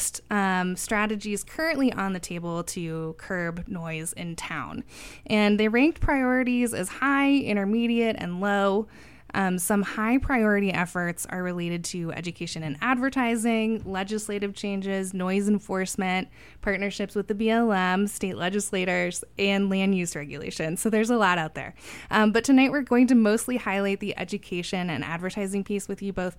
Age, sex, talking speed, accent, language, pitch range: 20-39, female, 150 wpm, American, English, 175-225 Hz